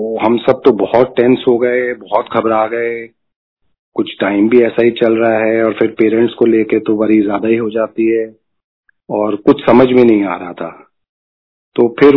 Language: Hindi